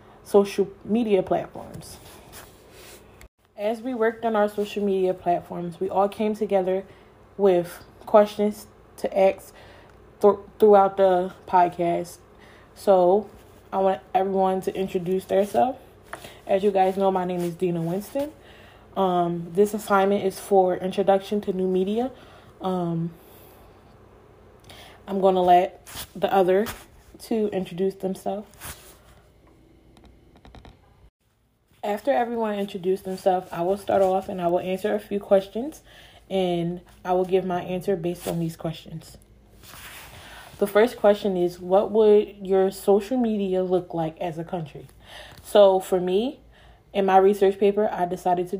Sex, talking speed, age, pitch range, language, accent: female, 130 wpm, 20-39, 180-200 Hz, English, American